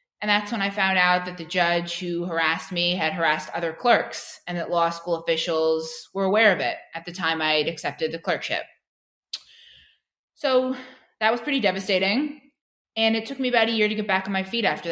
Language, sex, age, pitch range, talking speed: English, female, 20-39, 165-200 Hz, 210 wpm